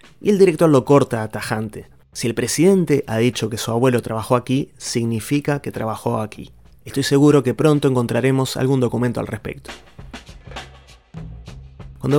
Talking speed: 150 wpm